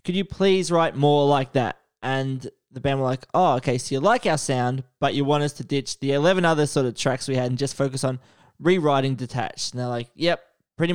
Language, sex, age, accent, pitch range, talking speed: English, male, 20-39, Australian, 130-155 Hz, 240 wpm